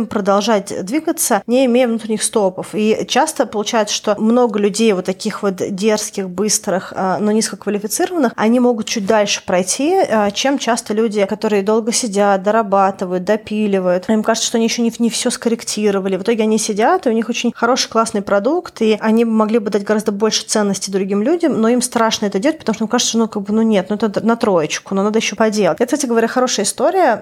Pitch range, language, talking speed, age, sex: 200-230 Hz, Russian, 200 wpm, 20-39, female